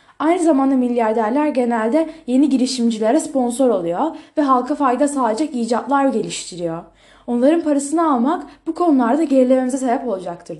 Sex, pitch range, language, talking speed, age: female, 225-290 Hz, Turkish, 125 wpm, 10-29